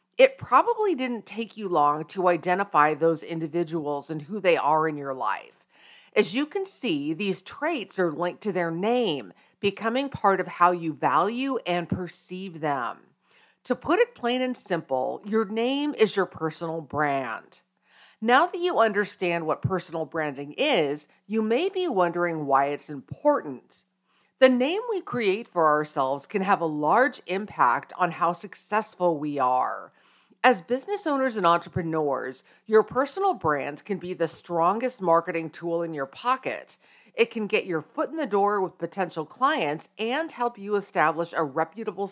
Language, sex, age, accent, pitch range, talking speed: English, female, 50-69, American, 160-230 Hz, 160 wpm